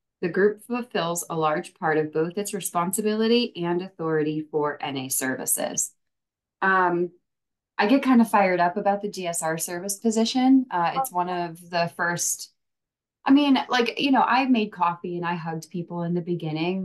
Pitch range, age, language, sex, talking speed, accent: 155-185 Hz, 20-39, English, female, 170 wpm, American